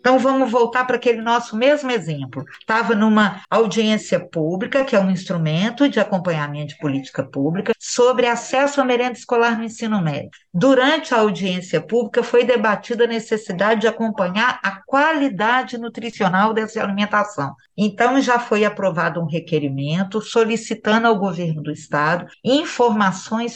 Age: 50-69